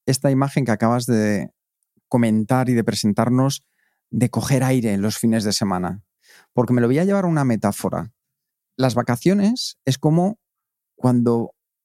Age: 40-59